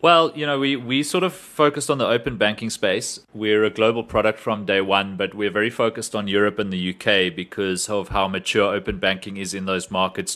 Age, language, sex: 30-49, English, male